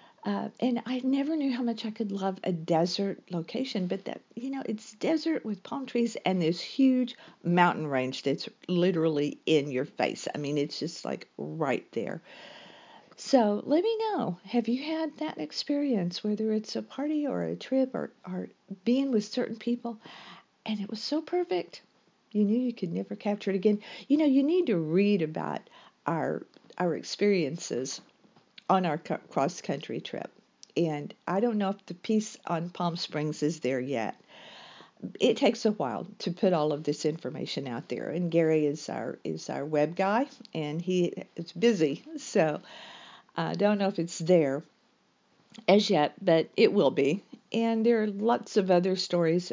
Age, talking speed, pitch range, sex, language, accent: 50-69, 175 wpm, 160-230 Hz, female, English, American